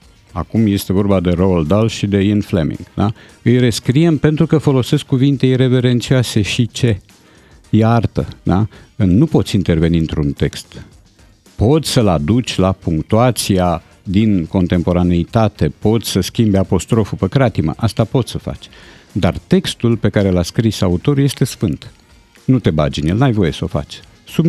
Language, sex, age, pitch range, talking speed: Romanian, male, 50-69, 95-125 Hz, 155 wpm